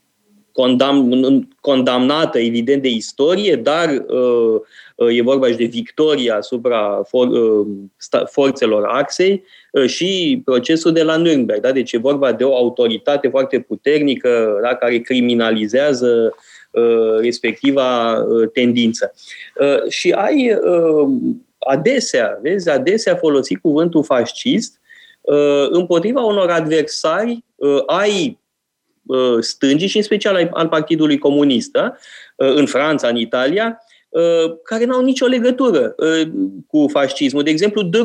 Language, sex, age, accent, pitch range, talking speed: Romanian, male, 20-39, native, 130-220 Hz, 105 wpm